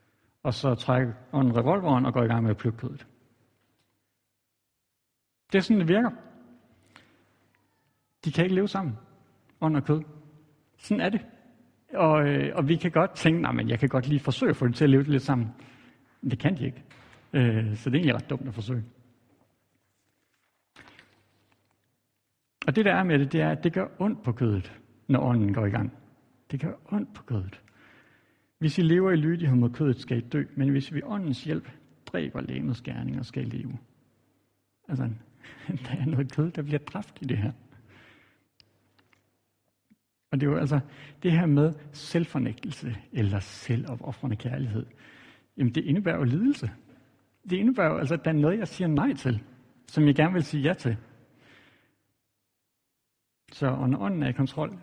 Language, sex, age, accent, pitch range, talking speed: Danish, male, 60-79, native, 120-150 Hz, 175 wpm